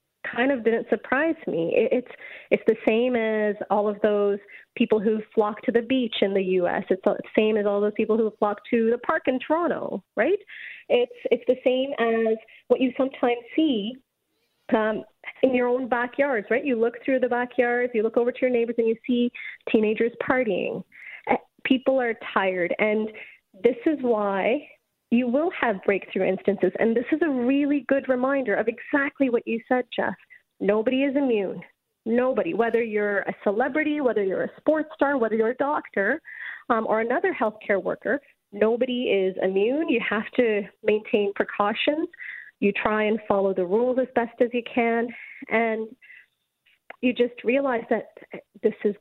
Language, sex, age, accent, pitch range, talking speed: English, female, 30-49, American, 215-260 Hz, 175 wpm